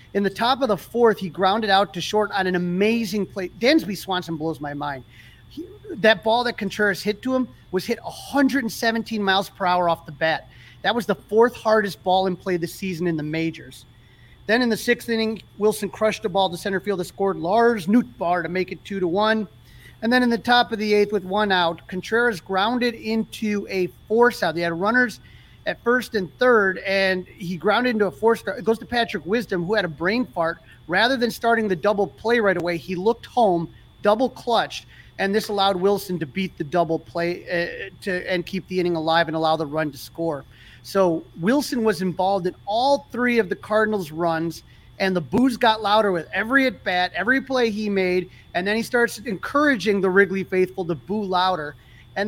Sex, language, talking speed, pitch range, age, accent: male, English, 210 wpm, 175-225 Hz, 40-59, American